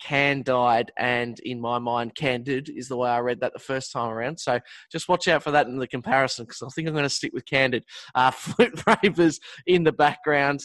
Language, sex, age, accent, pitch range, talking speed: English, male, 20-39, Australian, 120-155 Hz, 230 wpm